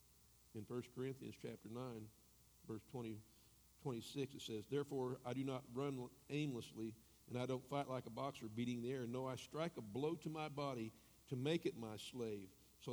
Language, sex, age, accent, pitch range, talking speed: English, male, 60-79, American, 105-125 Hz, 185 wpm